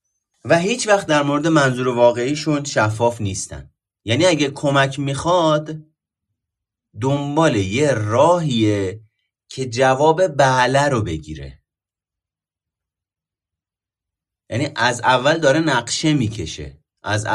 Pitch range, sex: 100-150 Hz, male